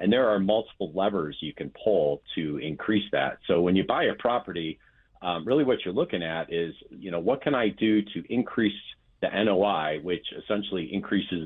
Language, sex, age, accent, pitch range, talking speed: English, male, 40-59, American, 85-100 Hz, 195 wpm